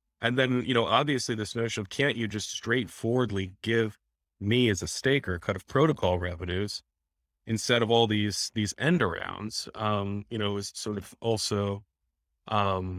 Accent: American